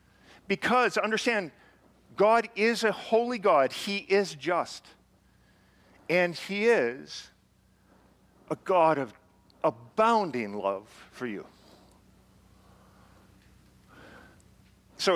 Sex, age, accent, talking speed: male, 50-69, American, 85 wpm